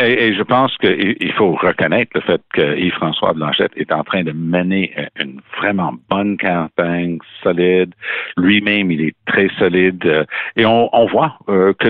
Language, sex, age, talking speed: French, male, 60-79, 165 wpm